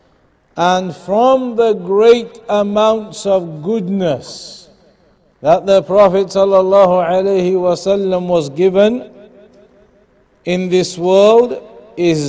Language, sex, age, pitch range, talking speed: English, male, 50-69, 165-195 Hz, 85 wpm